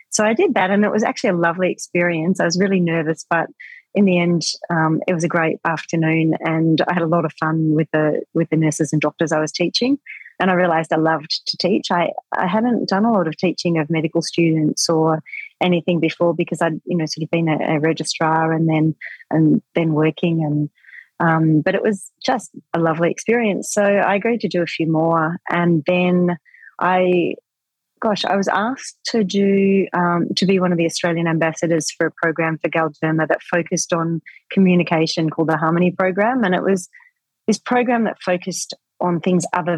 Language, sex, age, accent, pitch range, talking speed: English, female, 30-49, Australian, 160-185 Hz, 205 wpm